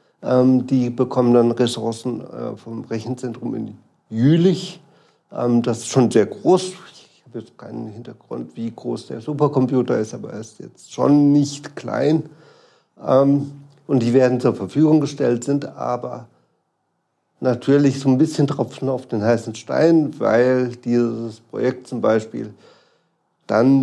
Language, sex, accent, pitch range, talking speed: German, male, German, 120-145 Hz, 135 wpm